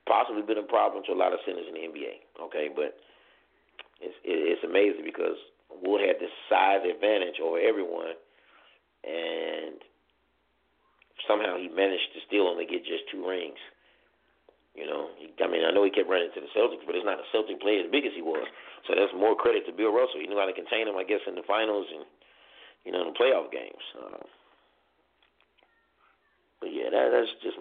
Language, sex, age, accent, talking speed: English, male, 40-59, American, 195 wpm